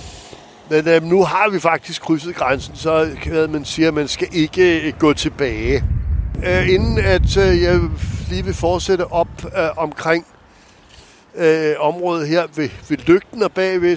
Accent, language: native, Danish